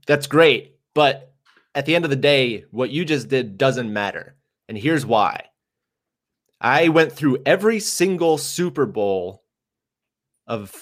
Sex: male